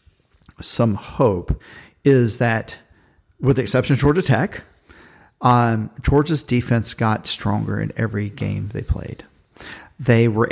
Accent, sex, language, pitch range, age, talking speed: American, male, English, 110-125 Hz, 40-59, 125 wpm